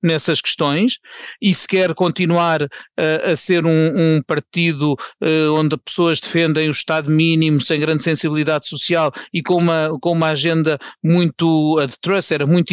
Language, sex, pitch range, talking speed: Portuguese, male, 155-180 Hz, 160 wpm